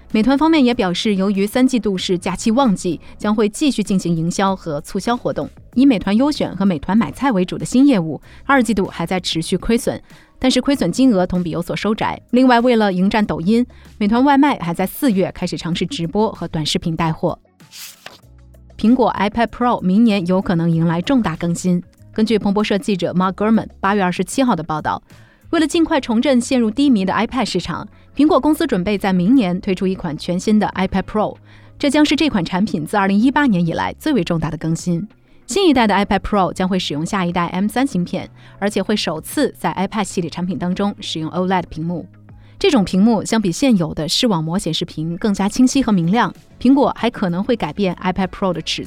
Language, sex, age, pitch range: Chinese, female, 20-39, 175-235 Hz